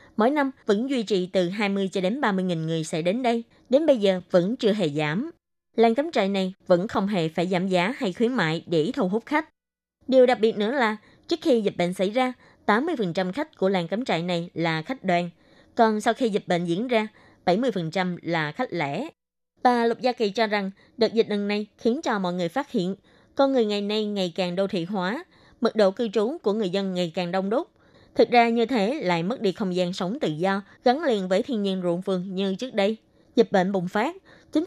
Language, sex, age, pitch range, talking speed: Vietnamese, female, 20-39, 180-240 Hz, 230 wpm